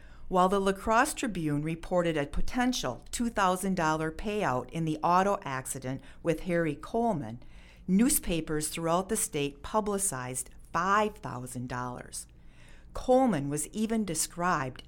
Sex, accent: female, American